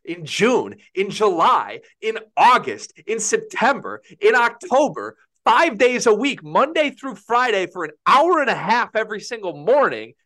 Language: English